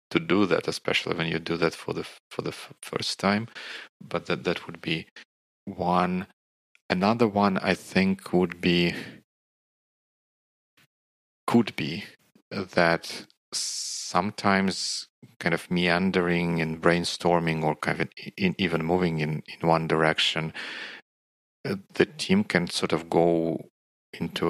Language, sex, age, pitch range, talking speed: Russian, male, 40-59, 80-90 Hz, 135 wpm